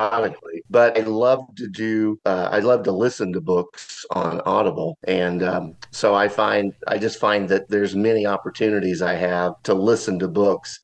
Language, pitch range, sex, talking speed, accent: English, 90-110 Hz, male, 175 wpm, American